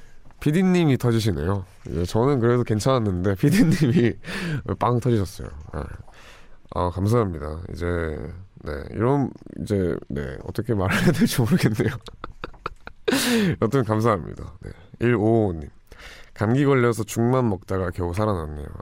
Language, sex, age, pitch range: Korean, male, 20-39, 90-115 Hz